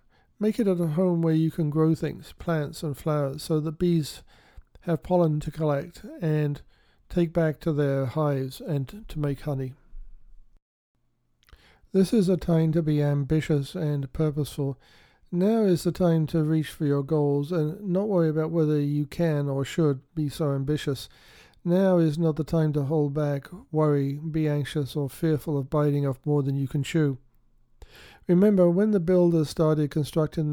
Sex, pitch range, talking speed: male, 145-165 Hz, 170 wpm